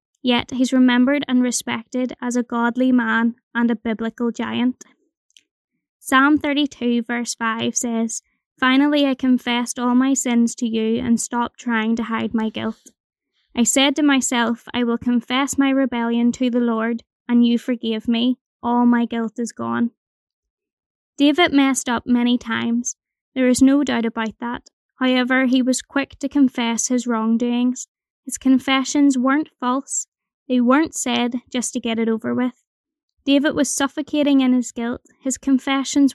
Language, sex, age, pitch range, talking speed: English, female, 20-39, 235-270 Hz, 155 wpm